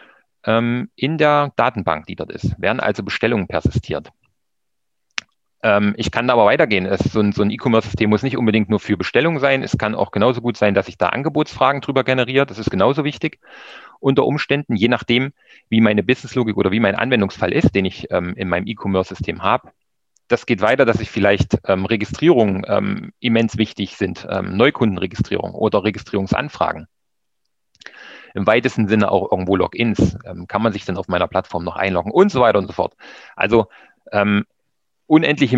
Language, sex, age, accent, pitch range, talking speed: German, male, 40-59, German, 100-130 Hz, 165 wpm